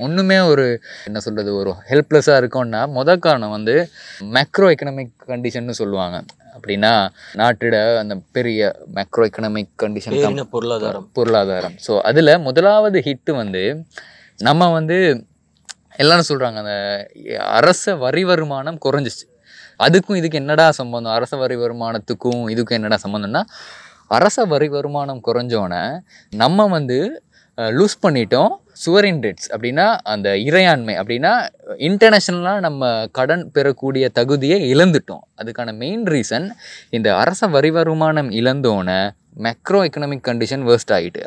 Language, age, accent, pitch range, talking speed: Tamil, 20-39, native, 115-160 Hz, 115 wpm